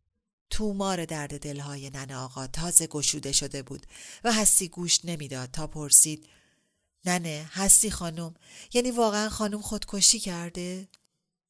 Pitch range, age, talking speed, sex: 145-190 Hz, 40-59, 125 wpm, female